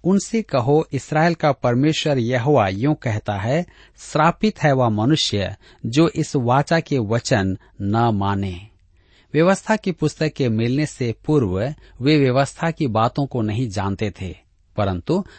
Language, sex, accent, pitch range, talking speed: Hindi, male, native, 105-155 Hz, 135 wpm